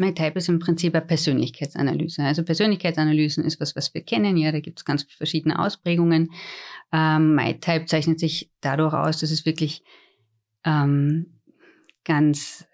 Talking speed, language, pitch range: 145 wpm, German, 150-170 Hz